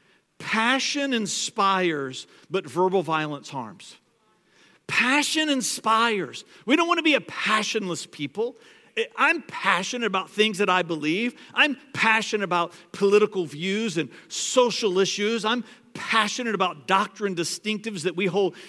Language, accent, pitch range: English, American, 180-235 Hz